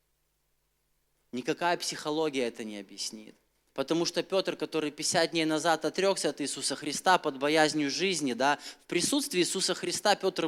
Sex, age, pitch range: male, 20-39, 140-180 Hz